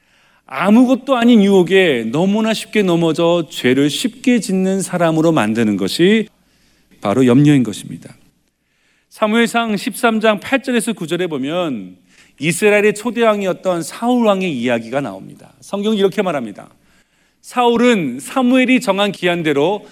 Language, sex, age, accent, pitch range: Korean, male, 40-59, native, 175-245 Hz